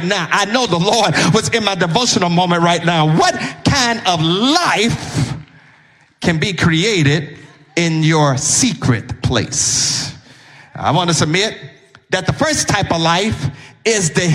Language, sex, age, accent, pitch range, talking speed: English, male, 40-59, American, 145-205 Hz, 145 wpm